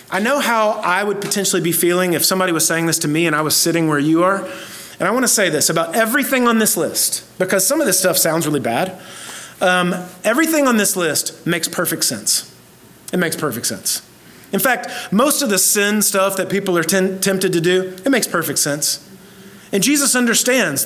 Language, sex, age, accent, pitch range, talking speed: English, male, 30-49, American, 175-215 Hz, 210 wpm